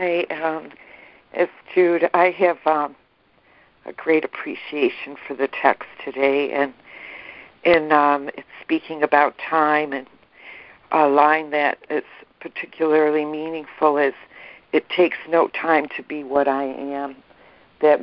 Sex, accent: female, American